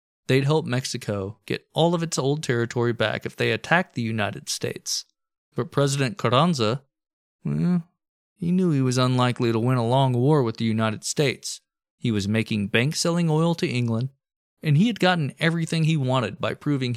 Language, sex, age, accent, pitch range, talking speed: English, male, 20-39, American, 115-155 Hz, 175 wpm